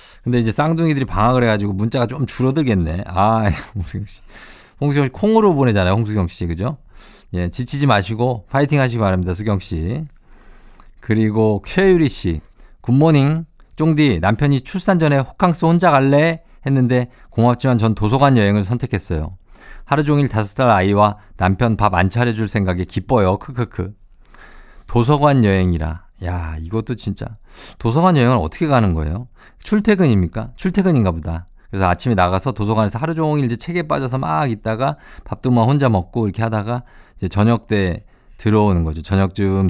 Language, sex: Korean, male